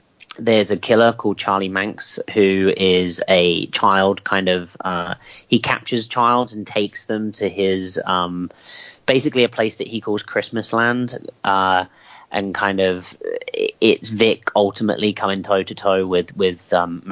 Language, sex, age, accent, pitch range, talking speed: English, male, 30-49, British, 100-125 Hz, 140 wpm